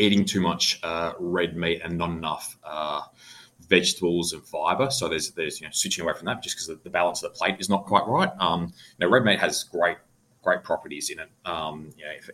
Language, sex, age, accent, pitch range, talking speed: English, male, 20-39, Australian, 85-105 Hz, 230 wpm